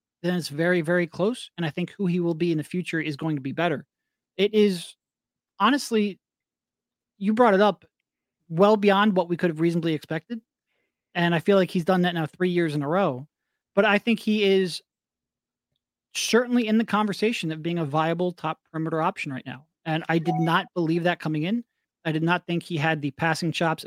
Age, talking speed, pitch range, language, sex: 30-49, 210 wpm, 160-200 Hz, English, male